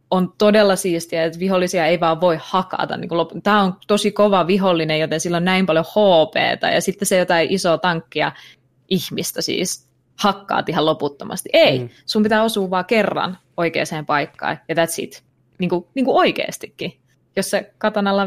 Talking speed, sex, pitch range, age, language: 160 wpm, female, 155-195 Hz, 20-39, Finnish